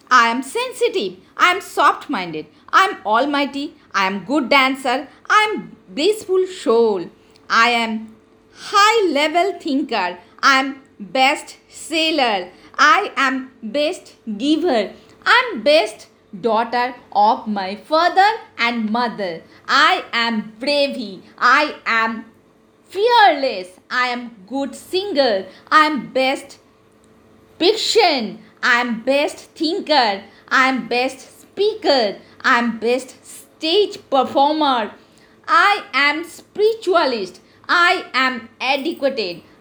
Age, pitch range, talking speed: 50-69, 230-340 Hz, 110 wpm